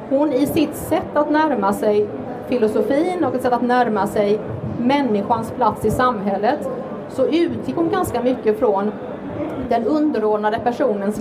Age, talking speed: 30-49, 145 wpm